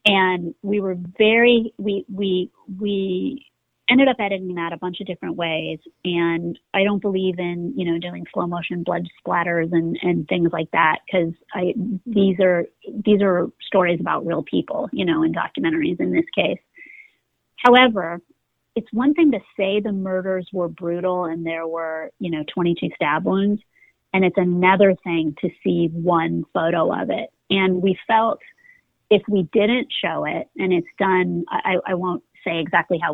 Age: 30-49